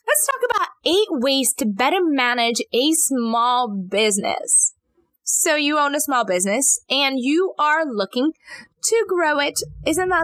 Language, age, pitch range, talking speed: English, 20-39, 220-335 Hz, 150 wpm